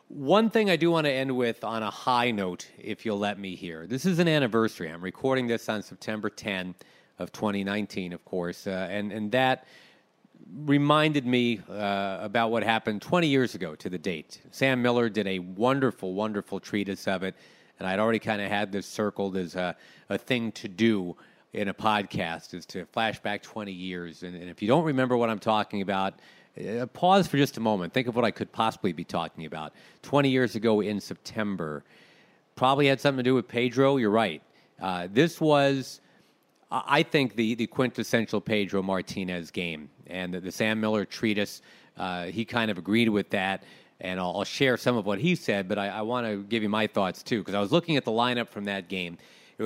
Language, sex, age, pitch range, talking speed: English, male, 40-59, 100-125 Hz, 210 wpm